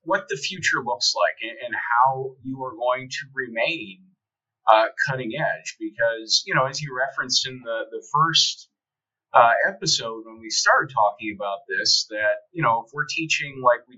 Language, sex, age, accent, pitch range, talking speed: English, male, 30-49, American, 110-150 Hz, 175 wpm